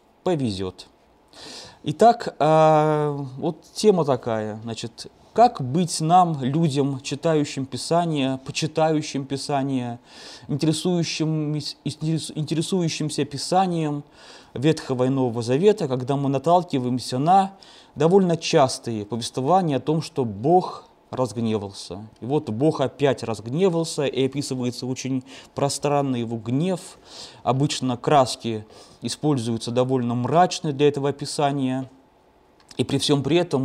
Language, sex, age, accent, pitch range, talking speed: Russian, male, 20-39, native, 125-155 Hz, 100 wpm